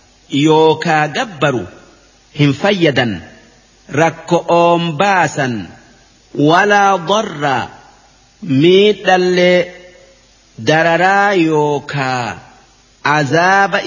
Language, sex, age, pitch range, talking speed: Arabic, male, 50-69, 155-190 Hz, 60 wpm